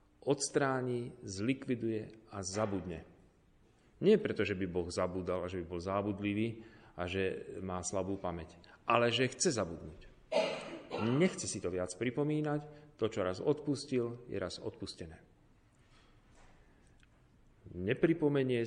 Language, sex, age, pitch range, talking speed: Slovak, male, 40-59, 95-130 Hz, 120 wpm